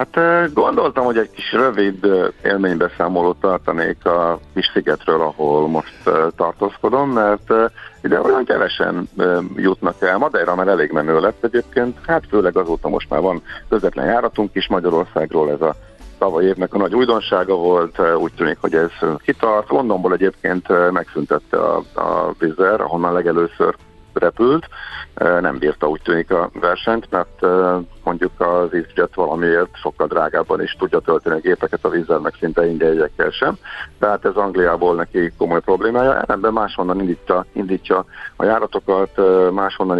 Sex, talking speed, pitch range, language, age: male, 145 wpm, 90-105 Hz, Hungarian, 50-69